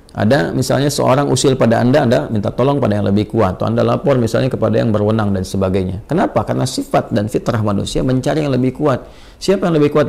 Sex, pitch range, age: male, 100-125 Hz, 40-59